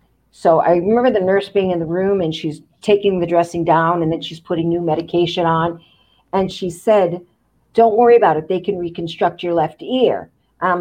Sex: female